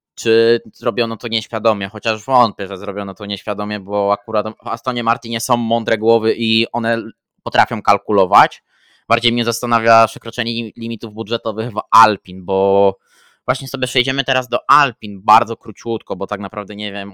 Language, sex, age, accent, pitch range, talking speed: Polish, male, 20-39, native, 105-120 Hz, 155 wpm